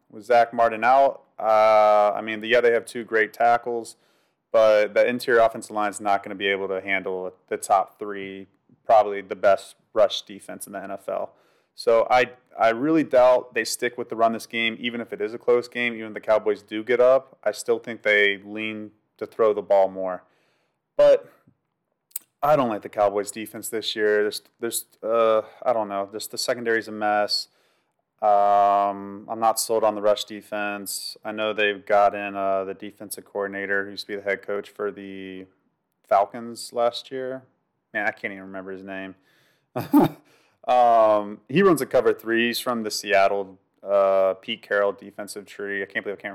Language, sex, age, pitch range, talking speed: English, male, 30-49, 100-115 Hz, 195 wpm